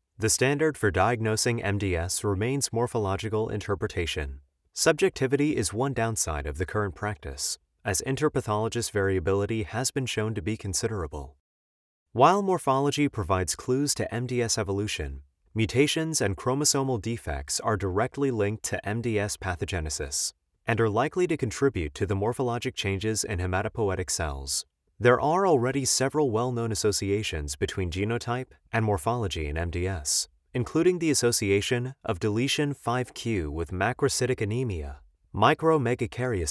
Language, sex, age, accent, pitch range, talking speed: English, male, 30-49, American, 95-125 Hz, 125 wpm